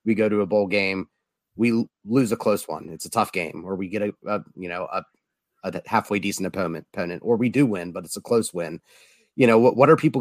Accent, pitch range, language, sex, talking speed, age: American, 100-115 Hz, English, male, 255 wpm, 30-49